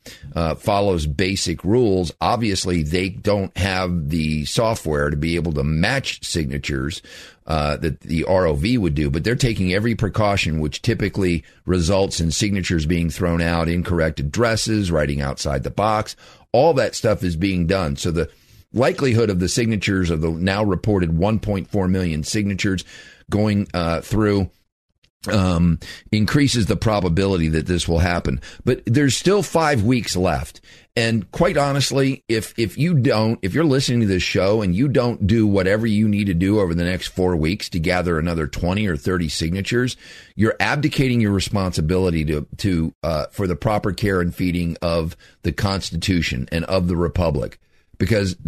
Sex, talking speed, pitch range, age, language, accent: male, 165 wpm, 85-105 Hz, 50-69, English, American